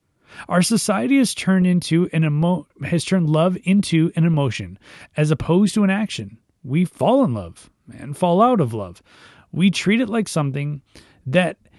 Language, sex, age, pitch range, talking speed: English, male, 30-49, 125-190 Hz, 165 wpm